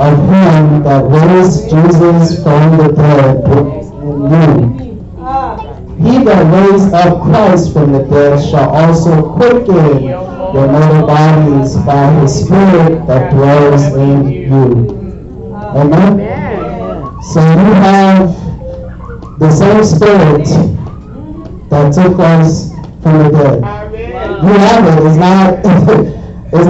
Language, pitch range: English, 145-185 Hz